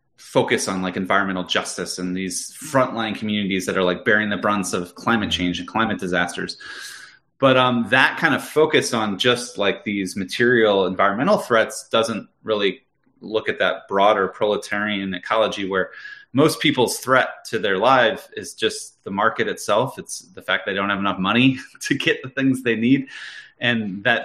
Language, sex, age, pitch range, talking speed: English, male, 30-49, 95-125 Hz, 175 wpm